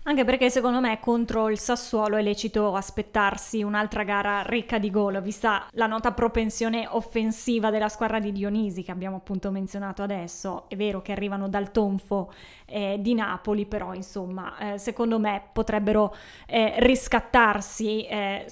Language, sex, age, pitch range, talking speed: Italian, female, 10-29, 205-230 Hz, 150 wpm